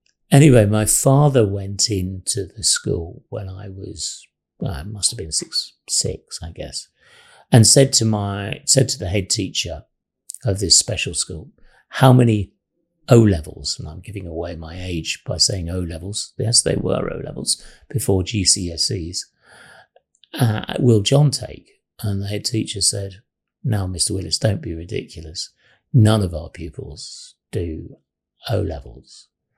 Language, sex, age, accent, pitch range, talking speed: English, male, 50-69, British, 95-125 Hz, 145 wpm